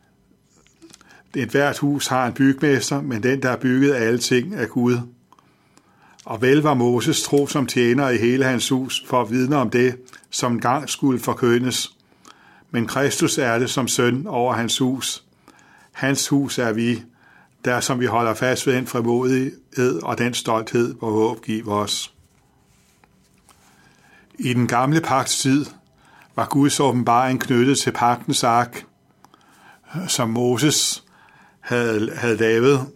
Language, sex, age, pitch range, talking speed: Danish, male, 60-79, 120-135 Hz, 145 wpm